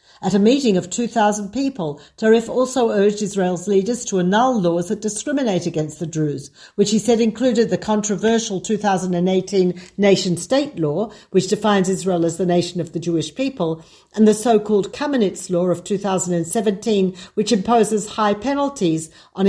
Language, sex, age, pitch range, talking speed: Hebrew, female, 50-69, 185-225 Hz, 155 wpm